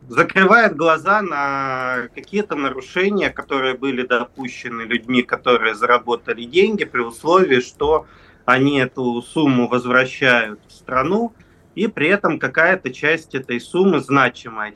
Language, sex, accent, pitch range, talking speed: Russian, male, native, 125-165 Hz, 120 wpm